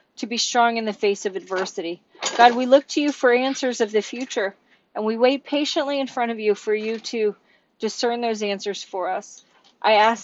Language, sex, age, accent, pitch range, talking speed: English, female, 40-59, American, 200-235 Hz, 210 wpm